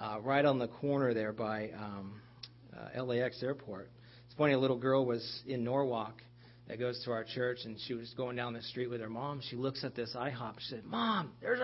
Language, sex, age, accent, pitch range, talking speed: English, male, 40-59, American, 120-150 Hz, 220 wpm